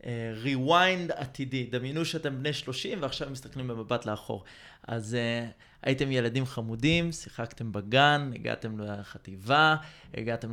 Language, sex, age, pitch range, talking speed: Hebrew, male, 20-39, 115-155 Hz, 115 wpm